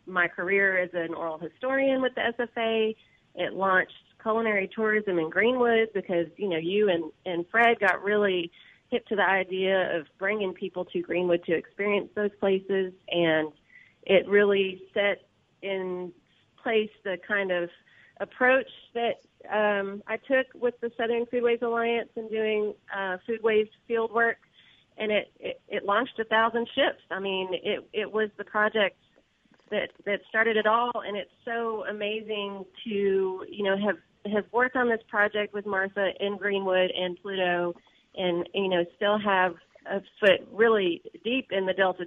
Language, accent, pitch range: English, American, 180-220 Hz